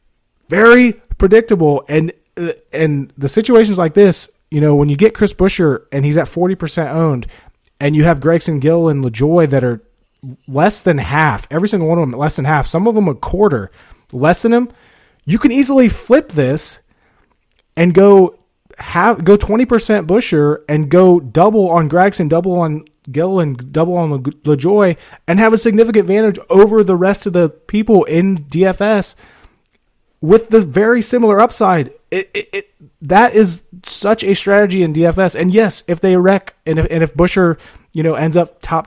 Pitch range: 155-205 Hz